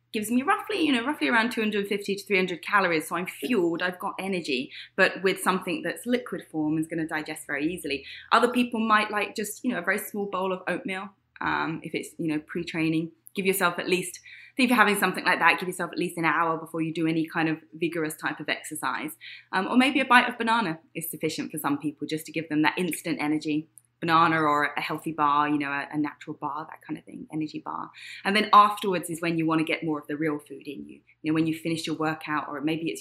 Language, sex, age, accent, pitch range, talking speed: English, female, 20-39, British, 155-195 Hz, 245 wpm